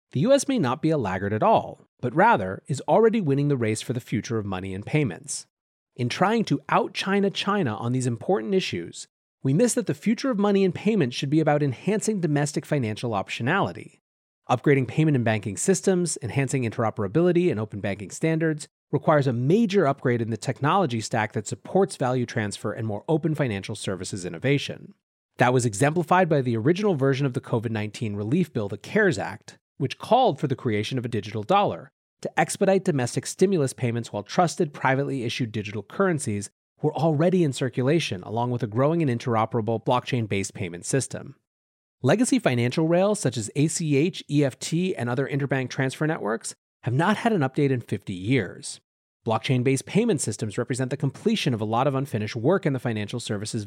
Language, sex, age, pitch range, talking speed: English, male, 30-49, 115-165 Hz, 180 wpm